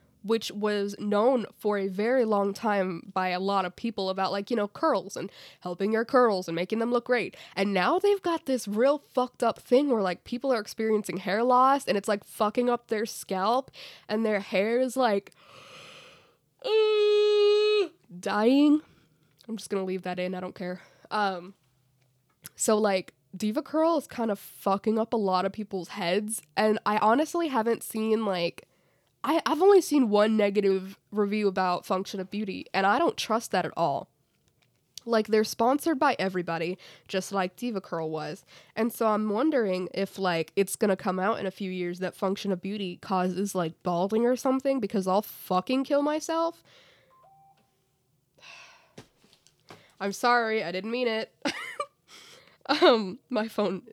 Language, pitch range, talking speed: English, 190-245 Hz, 170 wpm